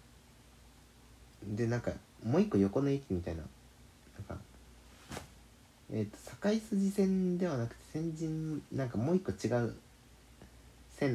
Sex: male